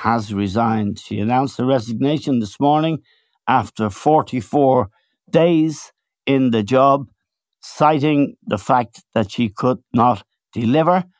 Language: English